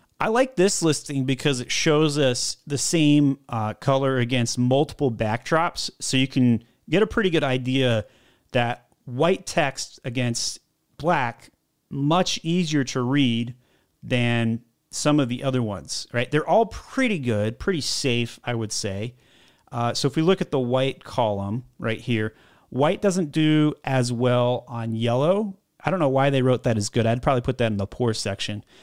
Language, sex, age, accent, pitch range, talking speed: English, male, 30-49, American, 120-160 Hz, 175 wpm